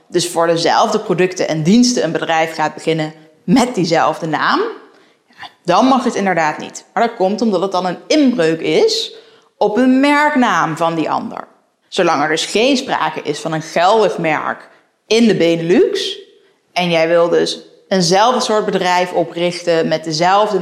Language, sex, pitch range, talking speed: Dutch, female, 175-255 Hz, 165 wpm